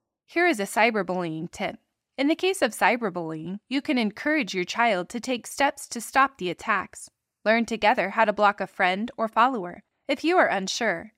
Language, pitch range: English, 195-255 Hz